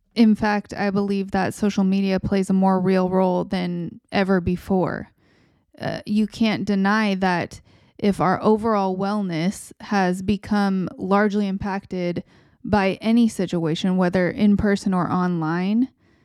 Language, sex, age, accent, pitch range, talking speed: English, female, 20-39, American, 180-205 Hz, 135 wpm